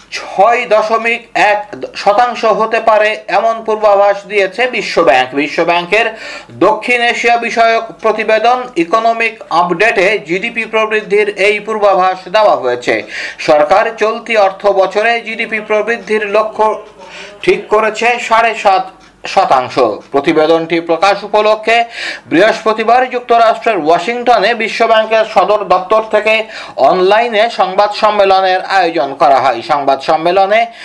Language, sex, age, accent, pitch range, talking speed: Bengali, male, 50-69, native, 200-230 Hz, 85 wpm